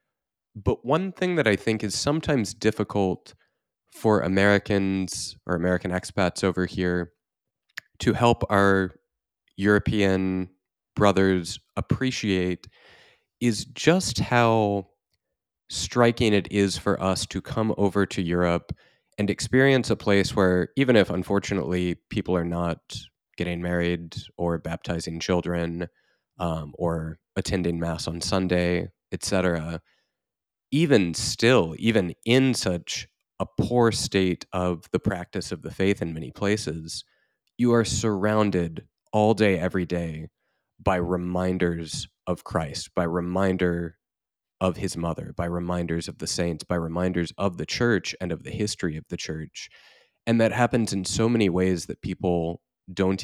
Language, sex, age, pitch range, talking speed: English, male, 20-39, 90-105 Hz, 135 wpm